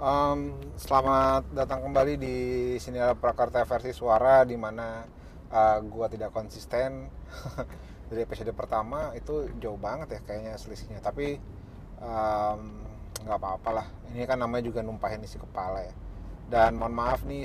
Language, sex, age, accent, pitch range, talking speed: Indonesian, male, 30-49, native, 100-125 Hz, 140 wpm